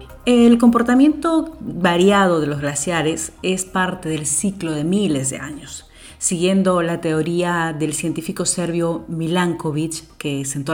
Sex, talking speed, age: female, 130 wpm, 40-59